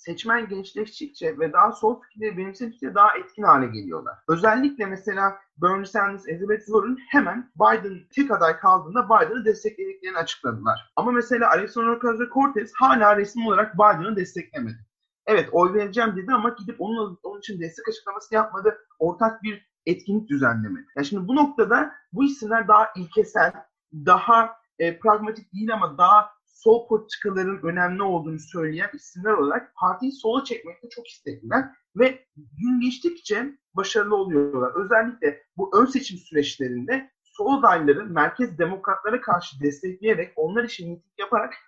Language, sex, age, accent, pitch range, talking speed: Turkish, male, 40-59, native, 180-240 Hz, 135 wpm